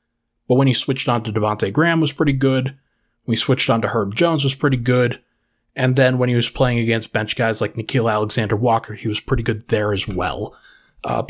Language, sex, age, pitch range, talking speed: English, male, 20-39, 115-135 Hz, 220 wpm